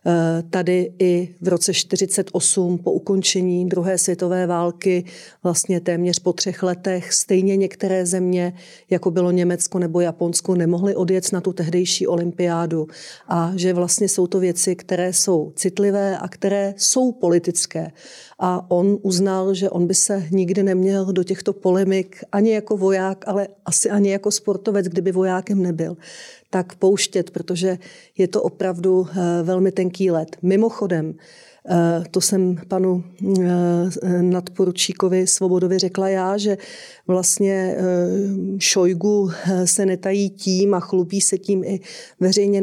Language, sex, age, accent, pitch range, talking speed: Czech, female, 40-59, native, 180-195 Hz, 130 wpm